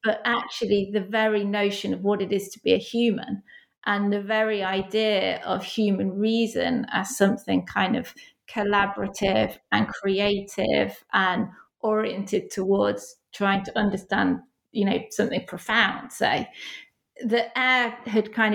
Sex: female